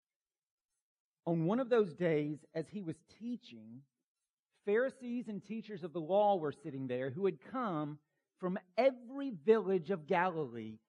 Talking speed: 145 wpm